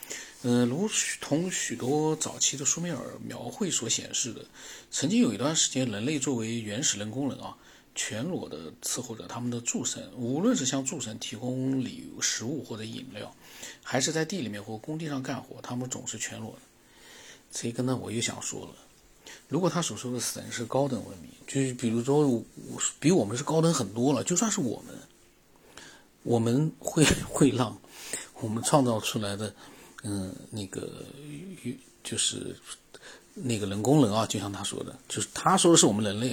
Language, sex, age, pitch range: Chinese, male, 50-69, 110-145 Hz